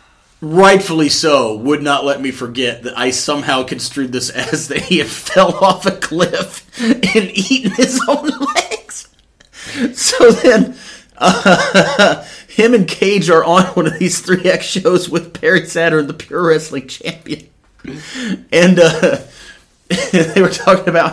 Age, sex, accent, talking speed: 30-49, male, American, 150 wpm